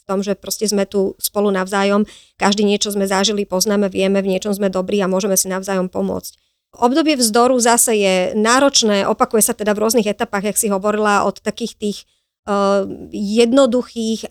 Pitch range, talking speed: 200-225 Hz, 170 wpm